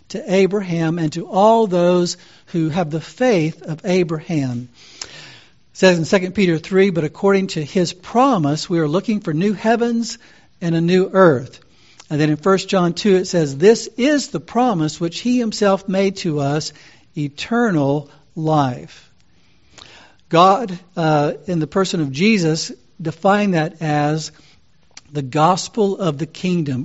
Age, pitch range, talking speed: 60-79, 155-195 Hz, 150 wpm